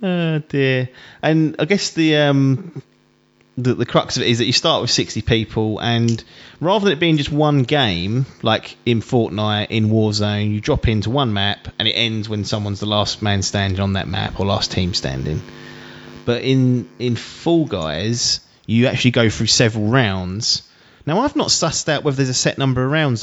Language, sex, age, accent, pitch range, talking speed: English, male, 30-49, British, 105-135 Hz, 195 wpm